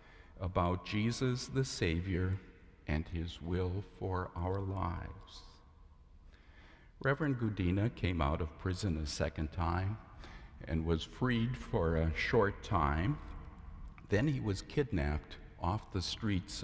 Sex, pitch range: male, 80-105 Hz